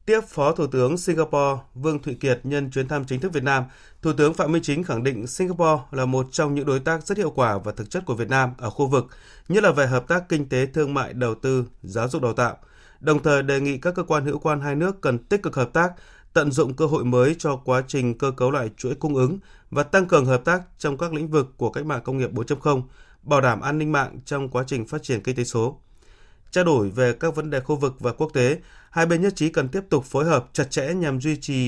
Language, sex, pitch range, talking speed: Vietnamese, male, 125-155 Hz, 265 wpm